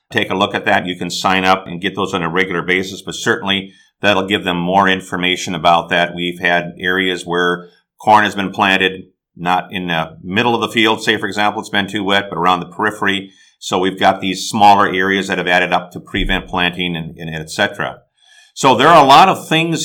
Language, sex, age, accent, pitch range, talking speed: English, male, 50-69, American, 95-110 Hz, 225 wpm